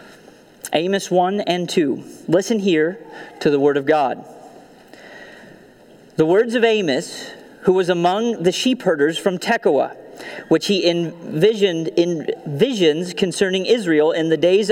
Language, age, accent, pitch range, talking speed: English, 40-59, American, 170-225 Hz, 135 wpm